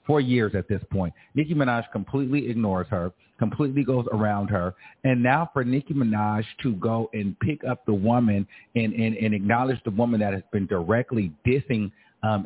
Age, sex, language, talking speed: 30-49, male, English, 185 wpm